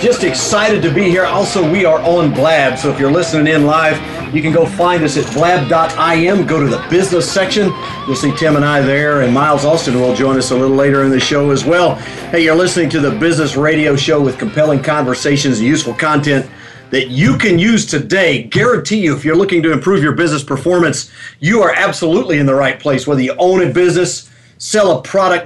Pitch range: 135-170 Hz